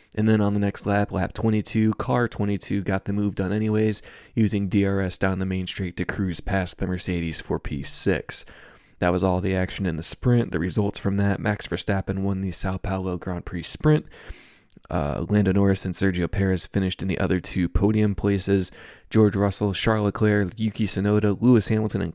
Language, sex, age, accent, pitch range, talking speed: English, male, 20-39, American, 90-105 Hz, 190 wpm